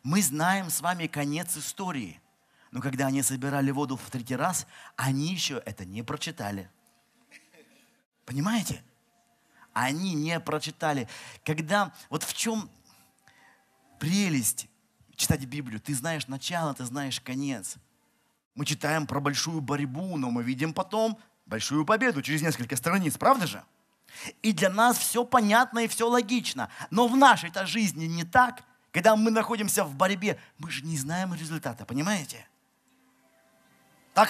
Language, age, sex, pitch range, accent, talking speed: Russian, 30-49, male, 140-220 Hz, native, 135 wpm